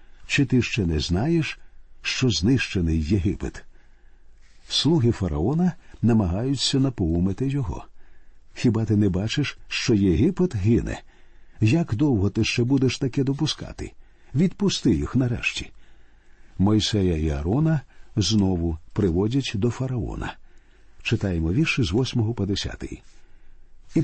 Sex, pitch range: male, 100-135 Hz